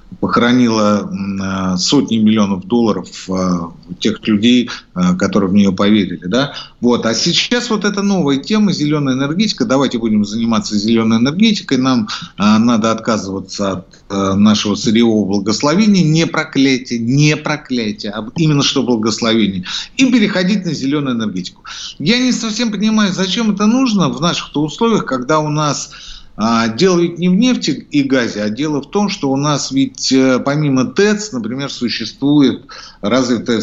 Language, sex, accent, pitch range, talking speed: Russian, male, native, 110-165 Hz, 140 wpm